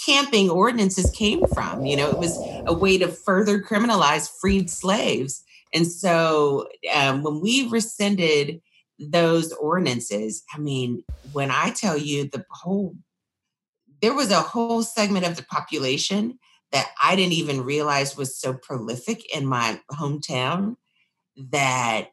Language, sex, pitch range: English, female, 135-185 Hz